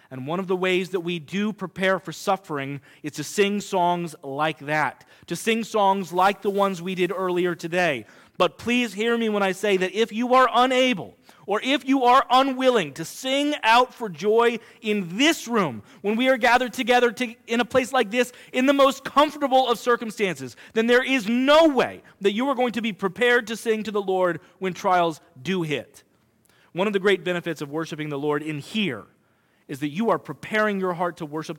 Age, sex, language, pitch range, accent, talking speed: 30-49, male, English, 175-240 Hz, American, 205 wpm